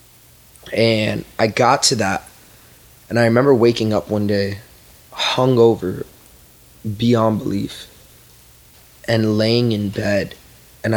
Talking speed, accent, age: 110 wpm, American, 20-39